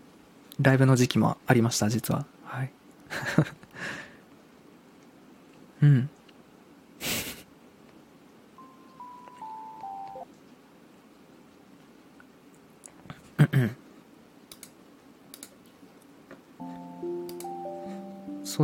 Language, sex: Japanese, male